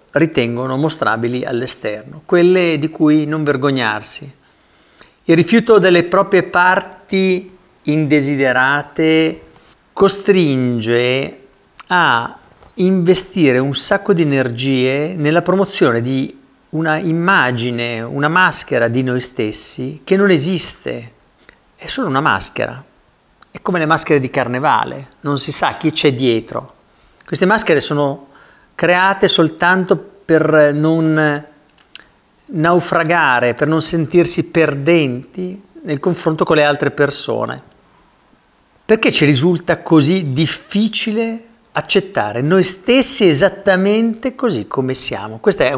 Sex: male